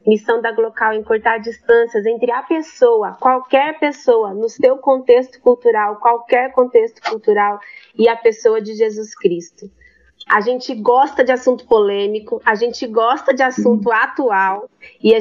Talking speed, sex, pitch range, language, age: 150 wpm, female, 220-270 Hz, Portuguese, 30-49